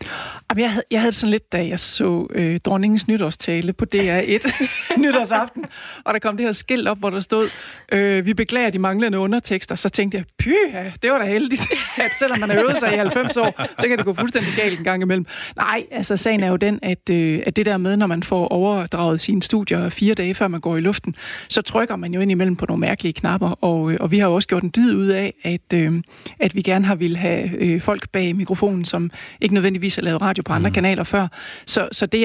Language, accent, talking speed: Danish, native, 240 wpm